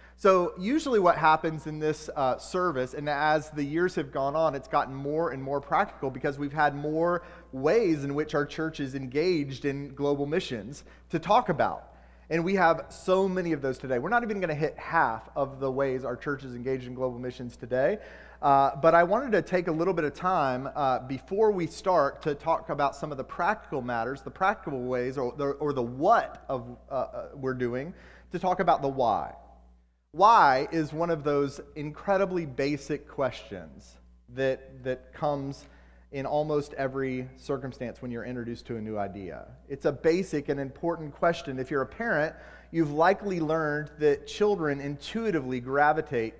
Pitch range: 130-165 Hz